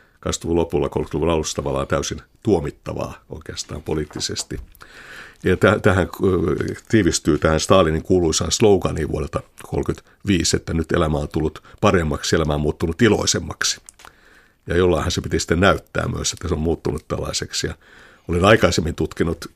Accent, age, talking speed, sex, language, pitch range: native, 60-79, 140 wpm, male, Finnish, 80-95 Hz